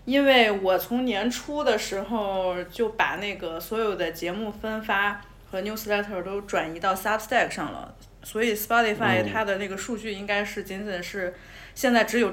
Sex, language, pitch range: female, Chinese, 180-240 Hz